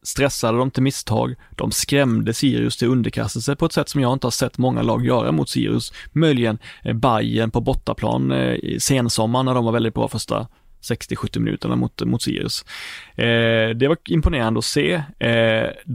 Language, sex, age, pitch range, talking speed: Swedish, male, 30-49, 115-135 Hz, 175 wpm